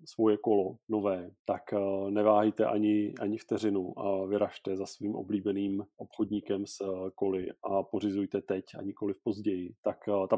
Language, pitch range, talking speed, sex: Czech, 100-110 Hz, 145 wpm, male